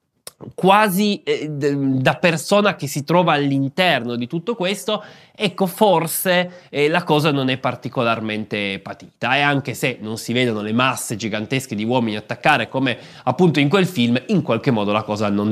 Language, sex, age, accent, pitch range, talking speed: Italian, male, 20-39, native, 120-170 Hz, 165 wpm